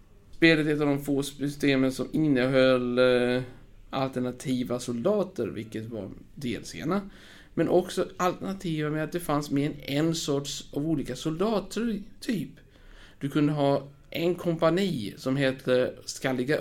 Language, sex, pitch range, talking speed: Swedish, male, 125-165 Hz, 125 wpm